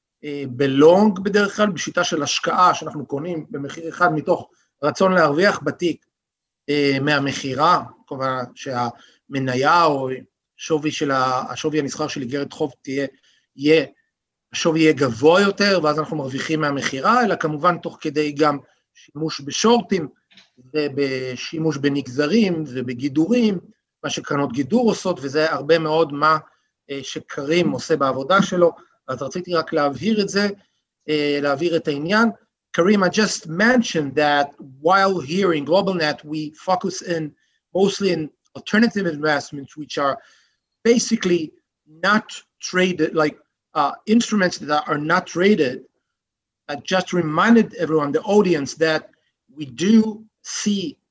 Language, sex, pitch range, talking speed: Hebrew, male, 145-185 Hz, 110 wpm